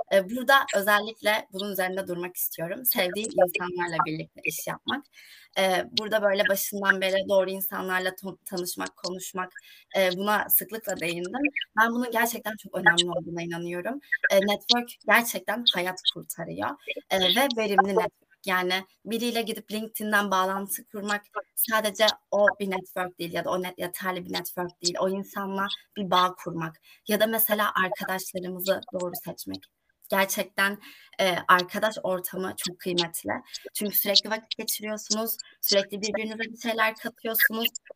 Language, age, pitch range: Turkish, 20-39, 185-220 Hz